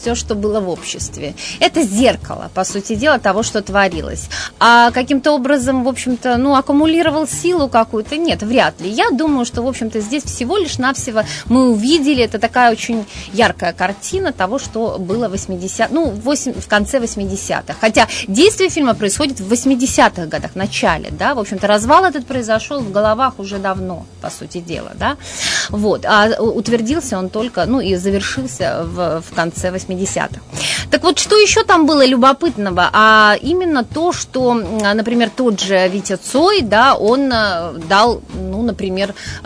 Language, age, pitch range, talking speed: Russian, 30-49, 195-265 Hz, 160 wpm